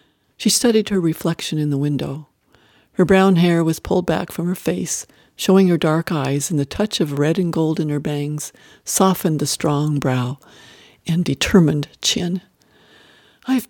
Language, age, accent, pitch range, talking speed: English, 60-79, American, 150-195 Hz, 165 wpm